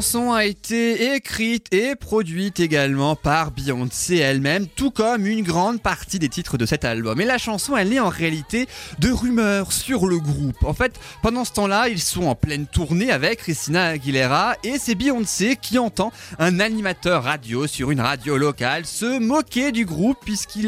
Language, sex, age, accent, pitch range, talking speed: French, male, 20-39, French, 135-205 Hz, 185 wpm